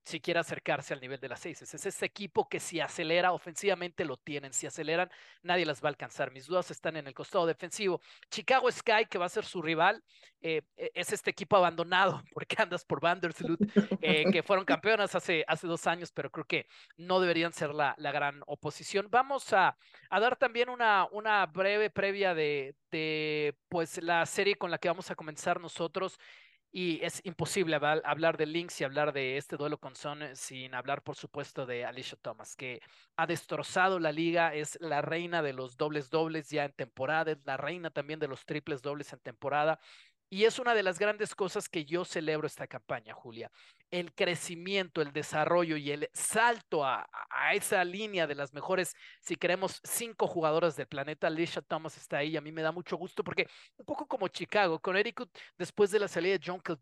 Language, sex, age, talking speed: Spanish, male, 40-59, 195 wpm